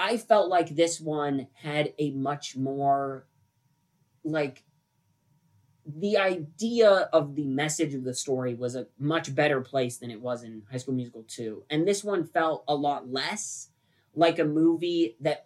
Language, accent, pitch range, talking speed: English, American, 130-165 Hz, 165 wpm